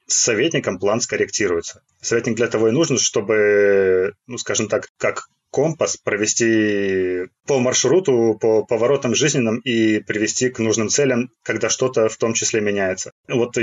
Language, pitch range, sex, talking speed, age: Russian, 110-135 Hz, male, 145 wpm, 20-39